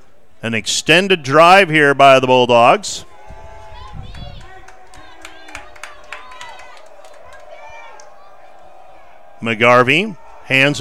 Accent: American